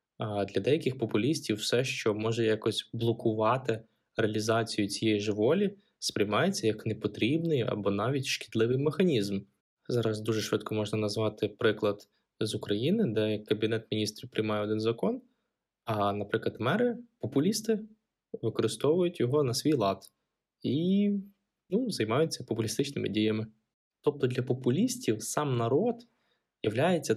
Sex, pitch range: male, 110-135 Hz